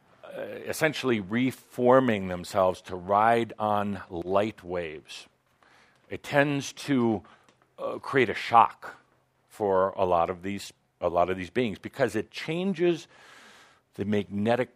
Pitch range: 95-125 Hz